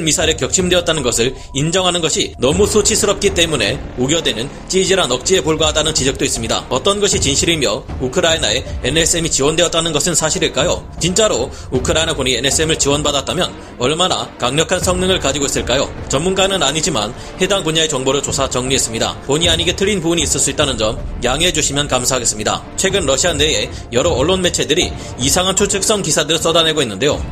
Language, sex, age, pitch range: Korean, male, 30-49, 140-180 Hz